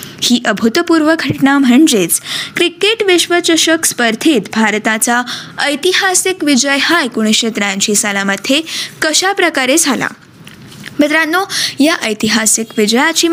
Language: Marathi